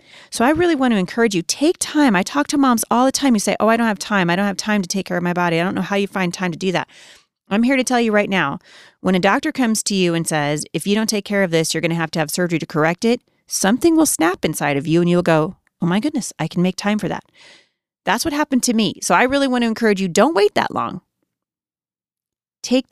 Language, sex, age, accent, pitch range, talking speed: English, female, 30-49, American, 170-220 Hz, 290 wpm